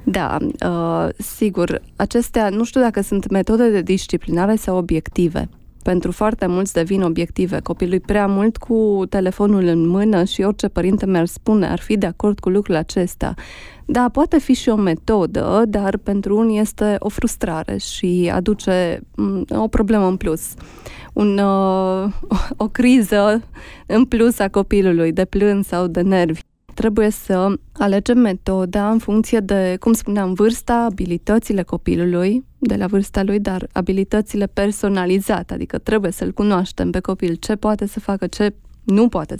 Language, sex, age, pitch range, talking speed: Romanian, female, 20-39, 185-225 Hz, 150 wpm